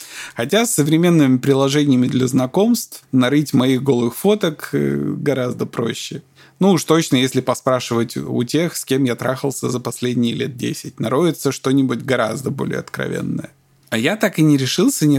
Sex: male